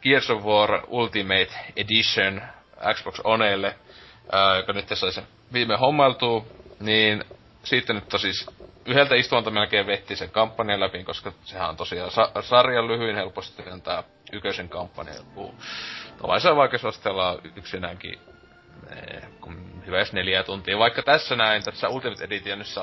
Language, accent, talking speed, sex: Finnish, native, 135 wpm, male